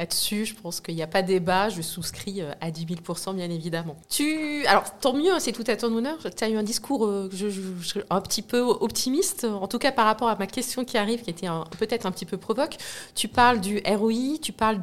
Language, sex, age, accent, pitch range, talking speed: French, female, 20-39, French, 180-225 Hz, 250 wpm